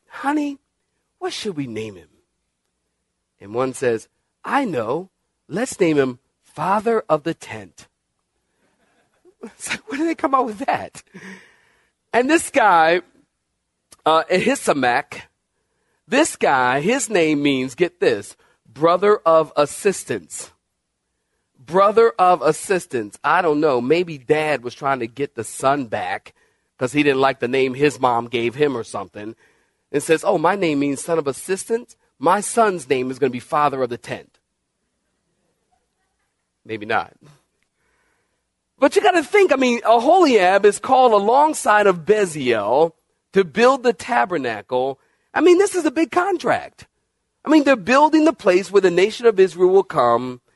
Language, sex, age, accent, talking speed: English, male, 40-59, American, 150 wpm